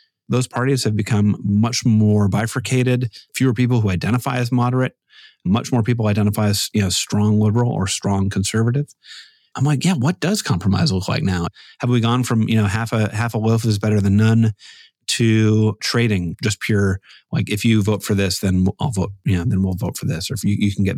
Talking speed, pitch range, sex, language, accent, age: 215 wpm, 100-125 Hz, male, English, American, 30-49